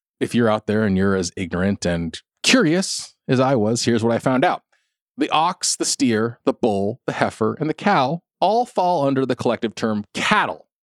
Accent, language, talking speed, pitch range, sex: American, English, 200 wpm, 95-135 Hz, male